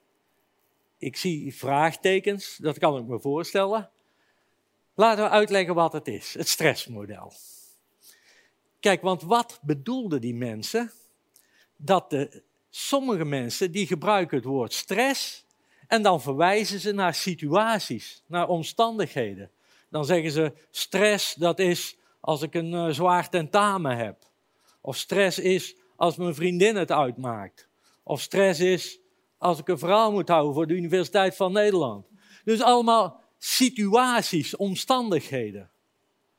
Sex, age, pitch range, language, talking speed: male, 50-69, 150-200 Hz, Dutch, 125 wpm